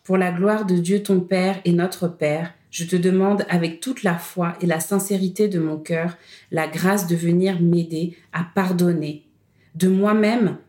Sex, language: female, French